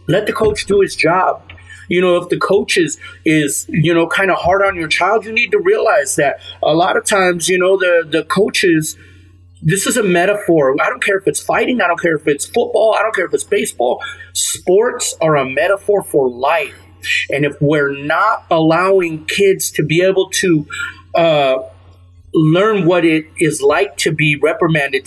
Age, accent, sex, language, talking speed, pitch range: 30-49, American, male, English, 195 wpm, 135-180 Hz